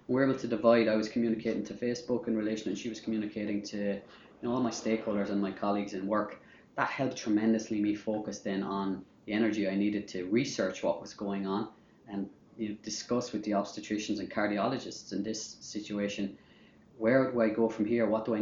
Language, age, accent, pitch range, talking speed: English, 20-39, Irish, 100-115 Hz, 210 wpm